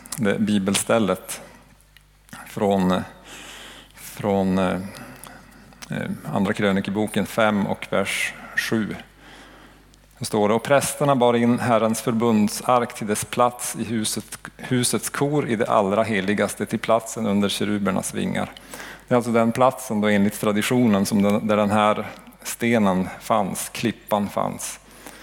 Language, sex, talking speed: Swedish, male, 115 wpm